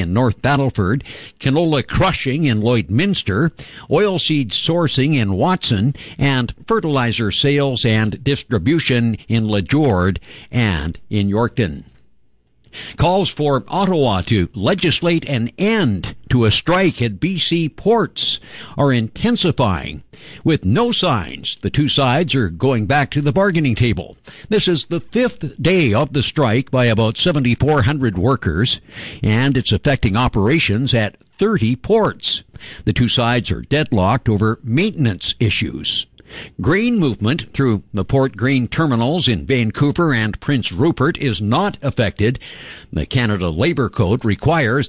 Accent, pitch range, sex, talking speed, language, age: American, 110-150 Hz, male, 130 wpm, English, 60-79